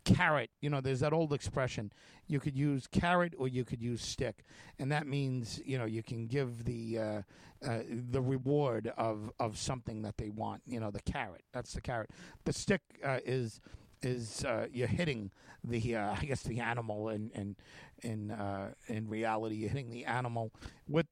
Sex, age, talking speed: male, 50-69, 190 wpm